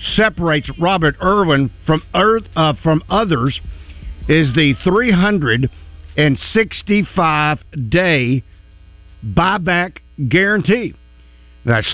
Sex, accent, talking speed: male, American, 70 wpm